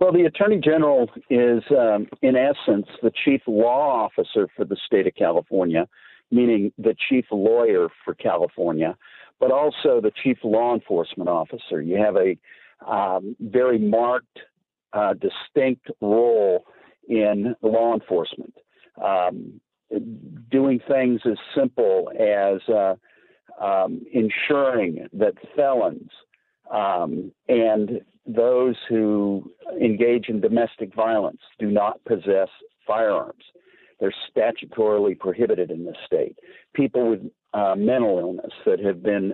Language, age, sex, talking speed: English, 50-69, male, 120 wpm